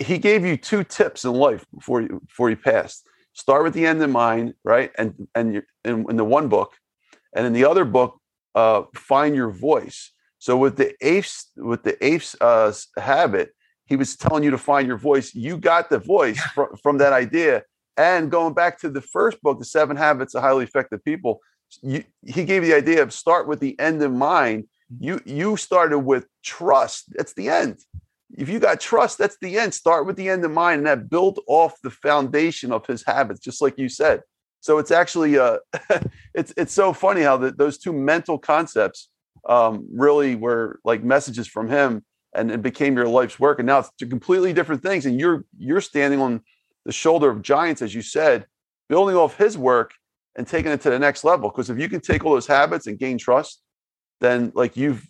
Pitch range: 125-165 Hz